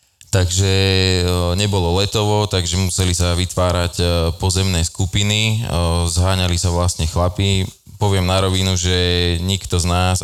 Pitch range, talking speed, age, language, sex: 85-95 Hz, 115 wpm, 20-39, Slovak, male